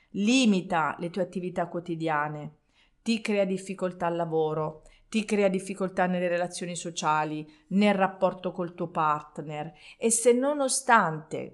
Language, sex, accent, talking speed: Italian, female, native, 125 wpm